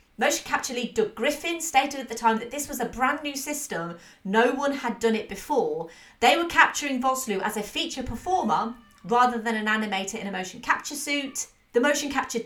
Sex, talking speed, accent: female, 200 wpm, British